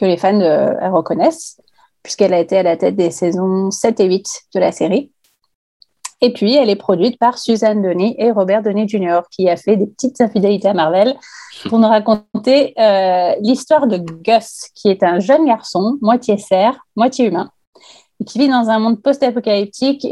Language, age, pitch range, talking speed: French, 30-49, 200-245 Hz, 180 wpm